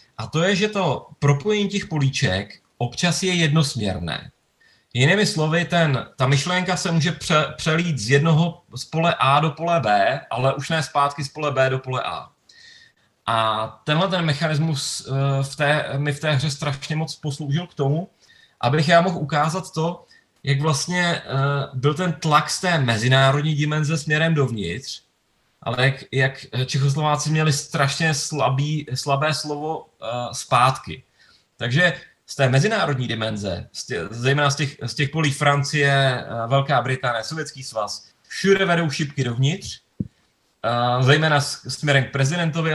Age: 30-49